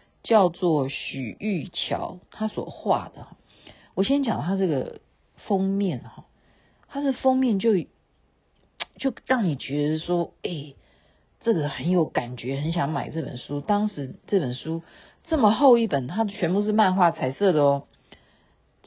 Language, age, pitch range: Chinese, 50-69, 135-195 Hz